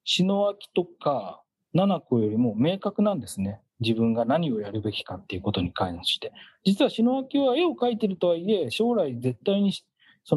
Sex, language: male, Japanese